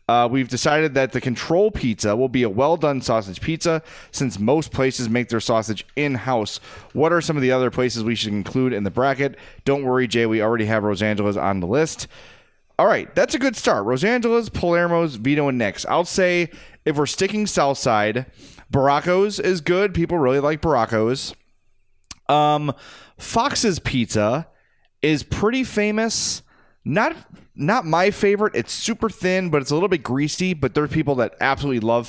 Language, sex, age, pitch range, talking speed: English, male, 30-49, 115-155 Hz, 175 wpm